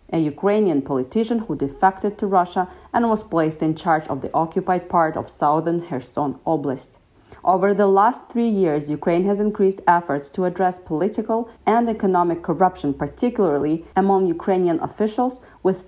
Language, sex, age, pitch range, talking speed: English, female, 40-59, 165-210 Hz, 150 wpm